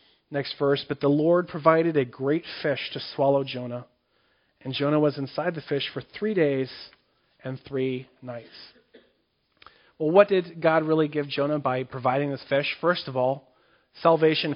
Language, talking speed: English, 160 wpm